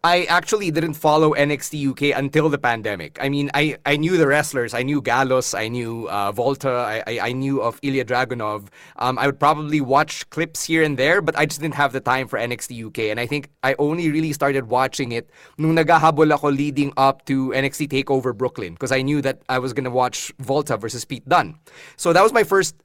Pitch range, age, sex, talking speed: 135-165 Hz, 20-39, male, 220 wpm